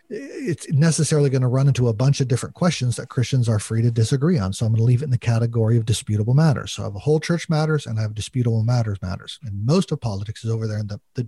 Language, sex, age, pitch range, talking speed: English, male, 40-59, 115-155 Hz, 280 wpm